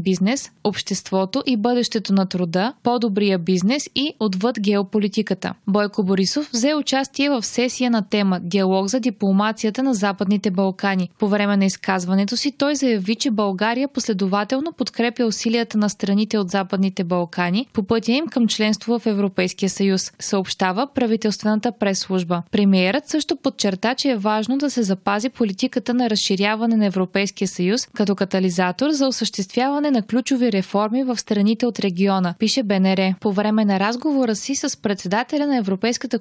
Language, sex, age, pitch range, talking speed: Bulgarian, female, 20-39, 195-250 Hz, 150 wpm